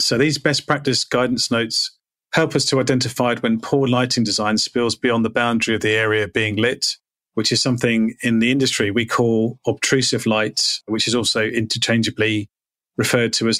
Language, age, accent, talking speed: English, 30-49, British, 175 wpm